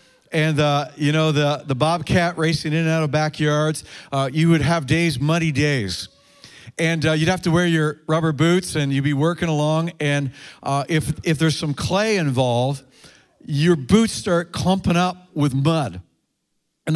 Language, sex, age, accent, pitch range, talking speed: English, male, 50-69, American, 145-180 Hz, 175 wpm